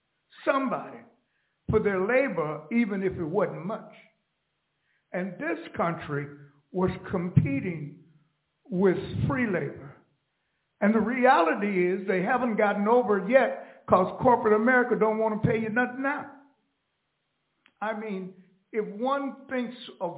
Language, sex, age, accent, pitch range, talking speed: English, male, 60-79, American, 175-225 Hz, 130 wpm